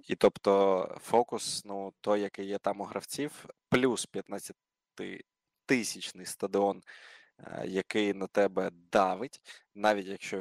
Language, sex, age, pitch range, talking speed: Ukrainian, male, 20-39, 95-105 Hz, 115 wpm